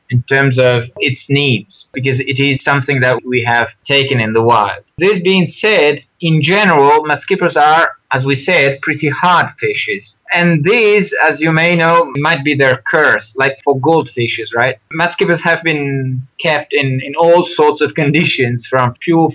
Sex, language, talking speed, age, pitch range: male, English, 170 wpm, 20-39, 130-160 Hz